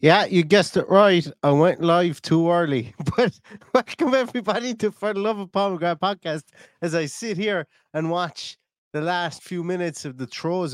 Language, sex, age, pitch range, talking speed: English, male, 30-49, 115-155 Hz, 185 wpm